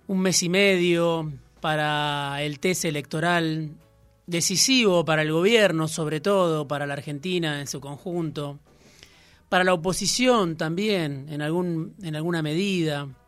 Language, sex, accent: Spanish, male, Argentinian